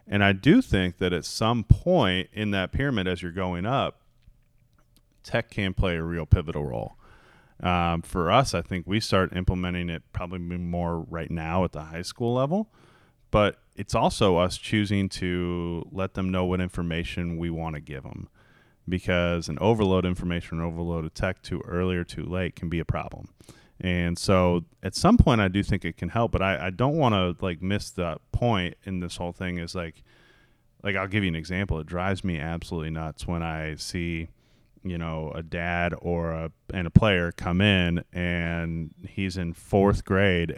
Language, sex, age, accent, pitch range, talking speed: English, male, 30-49, American, 85-100 Hz, 190 wpm